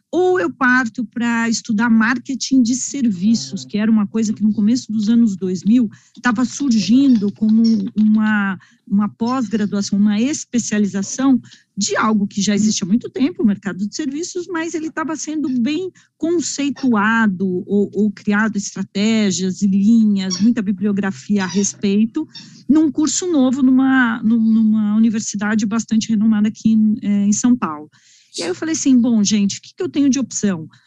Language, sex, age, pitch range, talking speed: Portuguese, female, 40-59, 205-255 Hz, 155 wpm